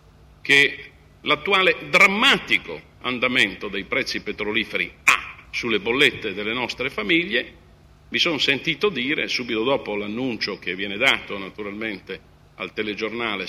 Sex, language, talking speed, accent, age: male, Italian, 115 wpm, native, 50-69